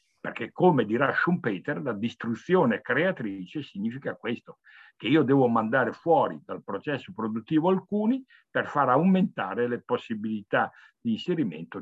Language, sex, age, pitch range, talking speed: Italian, male, 60-79, 125-205 Hz, 125 wpm